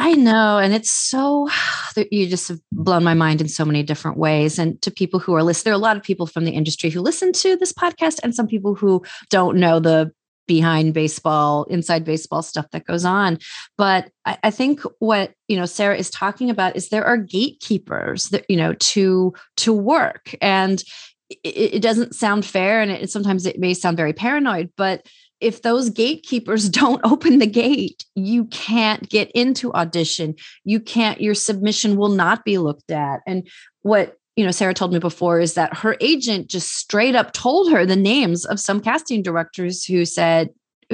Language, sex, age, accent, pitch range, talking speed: English, female, 30-49, American, 170-225 Hz, 195 wpm